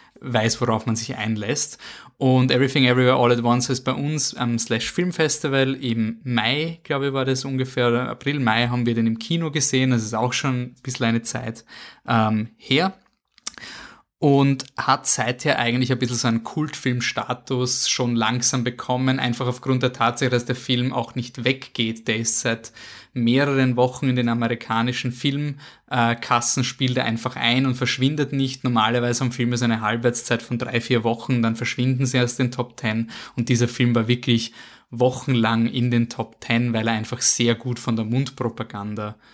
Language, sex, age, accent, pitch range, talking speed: German, male, 20-39, German, 115-130 Hz, 175 wpm